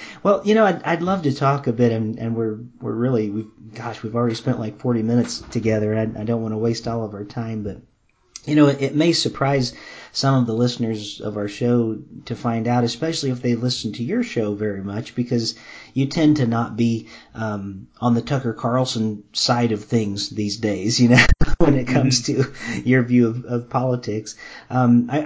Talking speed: 215 wpm